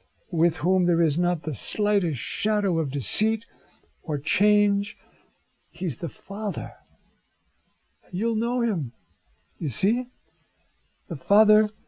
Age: 60-79